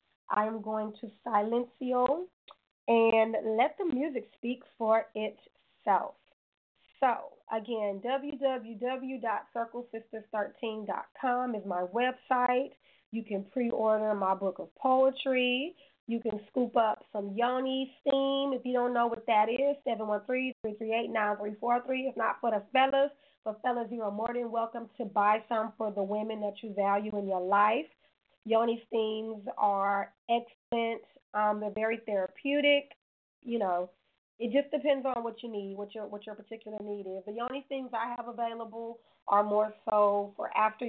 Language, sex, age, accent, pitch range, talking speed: English, female, 20-39, American, 210-250 Hz, 150 wpm